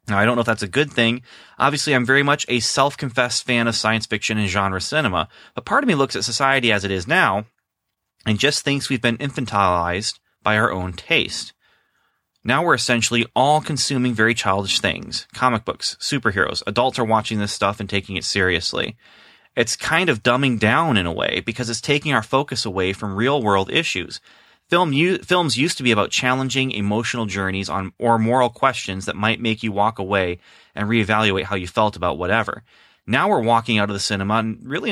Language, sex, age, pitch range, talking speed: English, male, 30-49, 105-135 Hz, 195 wpm